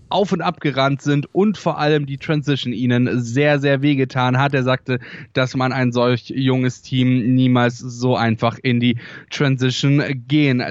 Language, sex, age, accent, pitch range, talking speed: German, male, 10-29, German, 125-160 Hz, 170 wpm